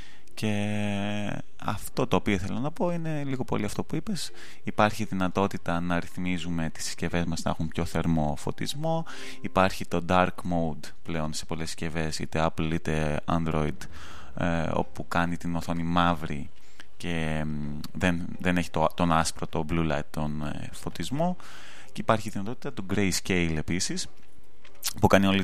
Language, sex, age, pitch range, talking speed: Greek, male, 20-39, 80-100 Hz, 150 wpm